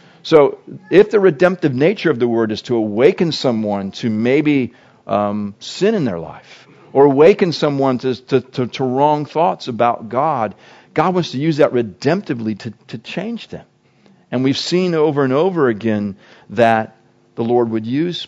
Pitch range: 120-160 Hz